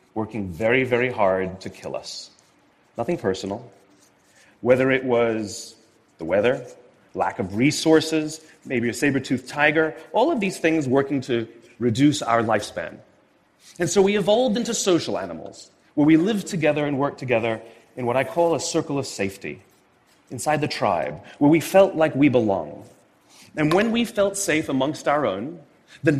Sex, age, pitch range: male, 30-49, 115-160 Hz